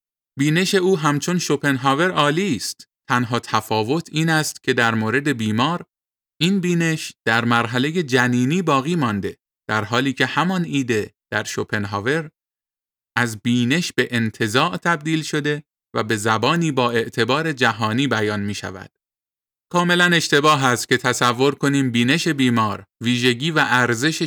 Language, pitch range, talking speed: Persian, 120-155 Hz, 135 wpm